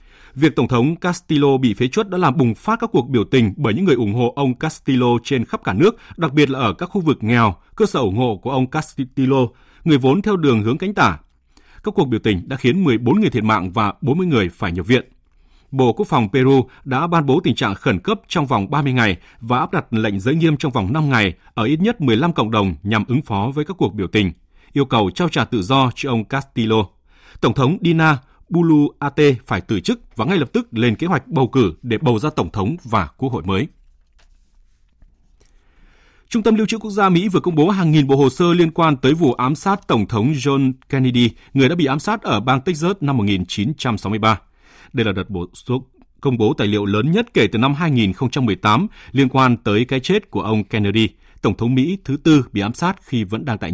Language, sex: Vietnamese, male